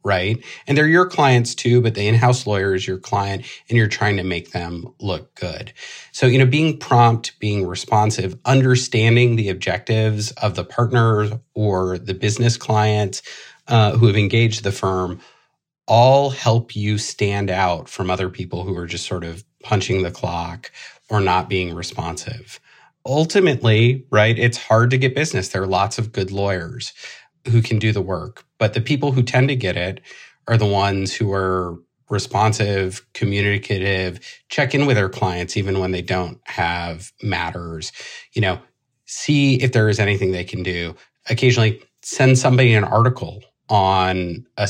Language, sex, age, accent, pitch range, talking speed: English, male, 30-49, American, 95-120 Hz, 170 wpm